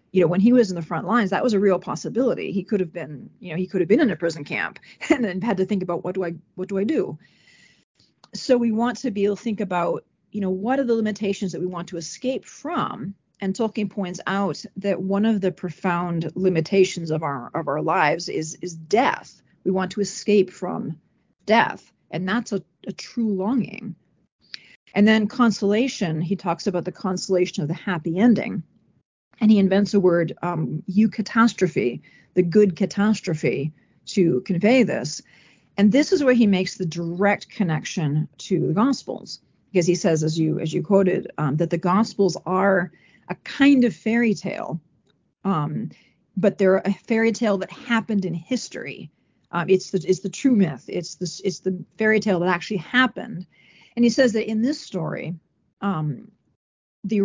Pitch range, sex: 175-215 Hz, female